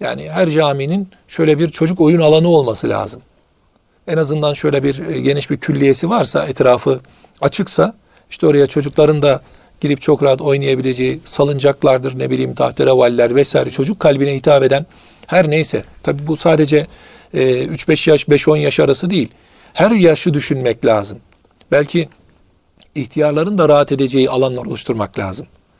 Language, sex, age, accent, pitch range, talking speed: Turkish, male, 40-59, native, 140-170 Hz, 140 wpm